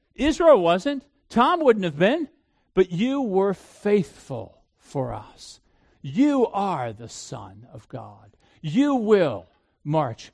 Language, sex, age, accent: English, male, 50-69, American